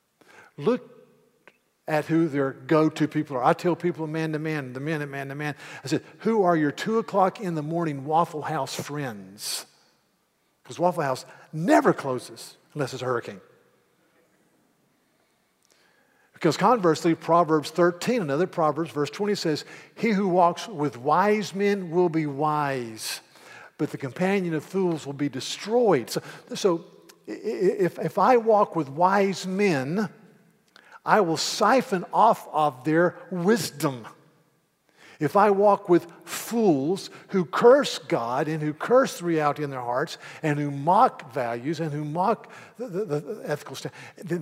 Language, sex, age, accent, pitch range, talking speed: English, male, 50-69, American, 145-190 Hz, 150 wpm